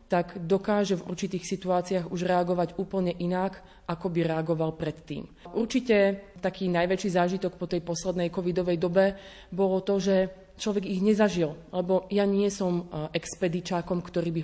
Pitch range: 170-190 Hz